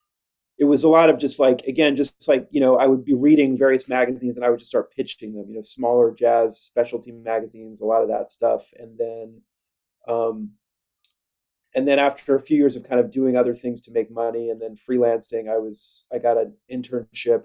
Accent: American